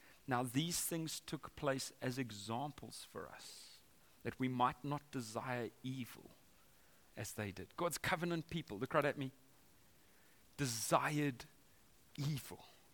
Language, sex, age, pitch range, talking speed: English, male, 30-49, 130-185 Hz, 125 wpm